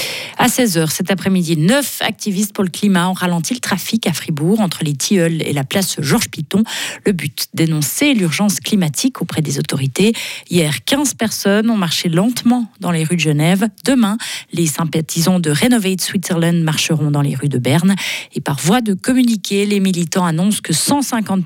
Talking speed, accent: 175 wpm, French